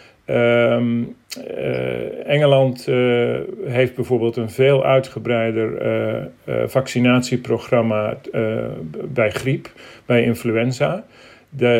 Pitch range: 115-130 Hz